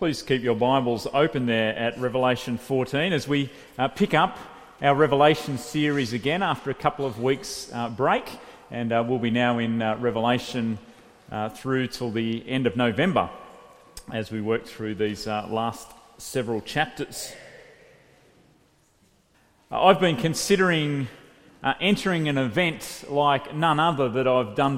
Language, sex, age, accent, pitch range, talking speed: English, male, 40-59, Australian, 130-185 Hz, 155 wpm